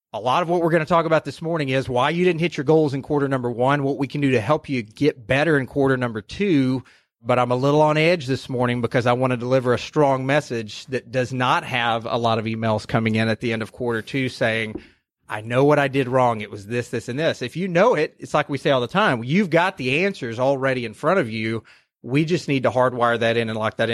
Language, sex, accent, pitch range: English, male, American, 115-145 Hz